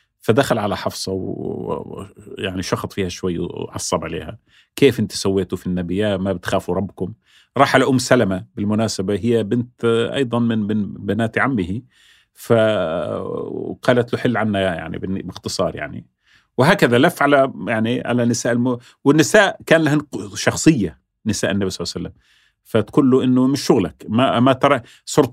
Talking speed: 150 wpm